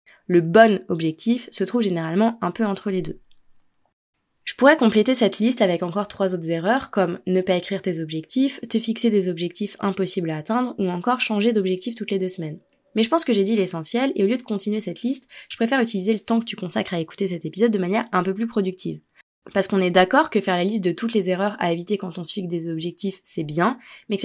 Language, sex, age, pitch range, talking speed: French, female, 20-39, 180-225 Hz, 240 wpm